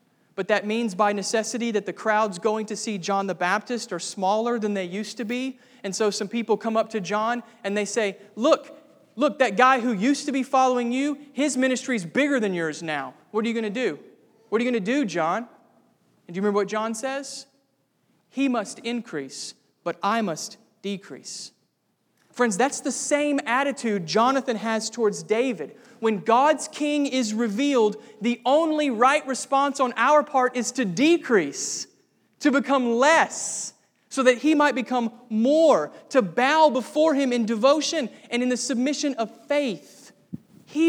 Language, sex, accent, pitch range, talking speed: English, male, American, 215-270 Hz, 175 wpm